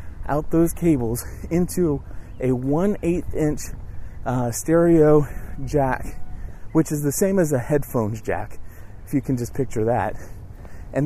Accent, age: American, 30-49